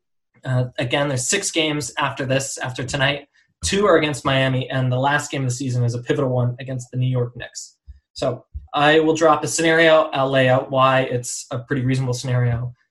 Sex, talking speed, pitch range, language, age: male, 205 wpm, 125-150 Hz, English, 20-39